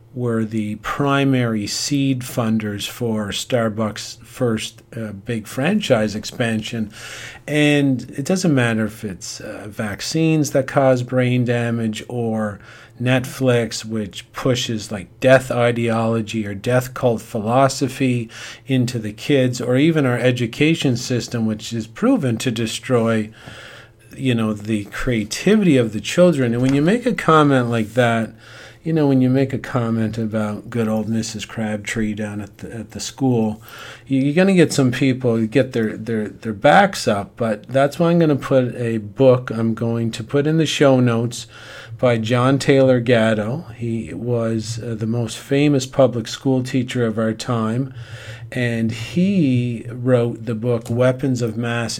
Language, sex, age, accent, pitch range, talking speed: English, male, 40-59, American, 110-135 Hz, 155 wpm